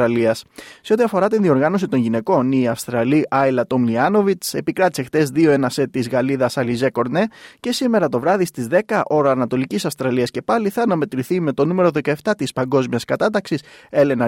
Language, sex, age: Greek, male, 20-39